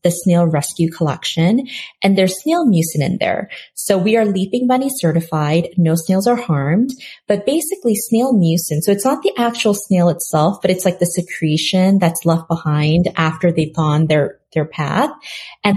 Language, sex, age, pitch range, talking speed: English, female, 30-49, 170-215 Hz, 175 wpm